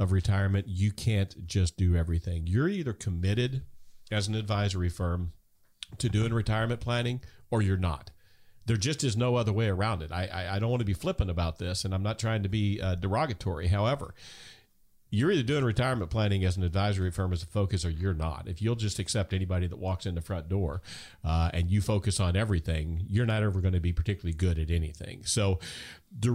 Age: 40-59